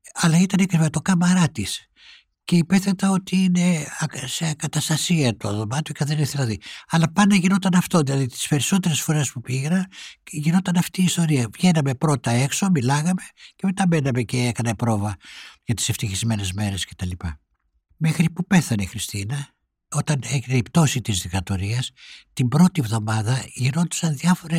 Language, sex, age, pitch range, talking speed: Greek, male, 60-79, 120-170 Hz, 150 wpm